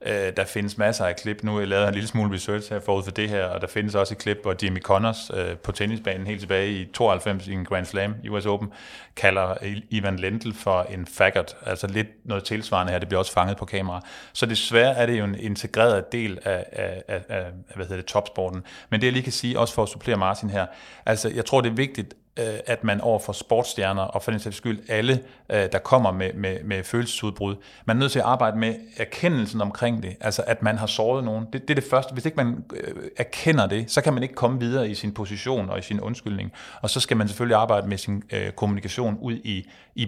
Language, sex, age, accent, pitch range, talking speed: Danish, male, 30-49, native, 100-115 Hz, 230 wpm